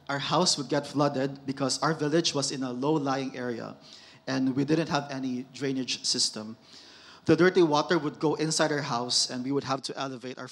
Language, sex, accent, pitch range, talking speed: English, male, Filipino, 130-155 Hz, 200 wpm